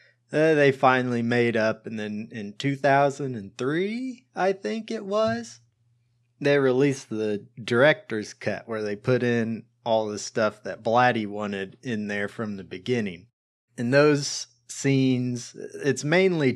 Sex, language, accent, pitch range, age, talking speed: male, English, American, 110-130 Hz, 30-49, 135 wpm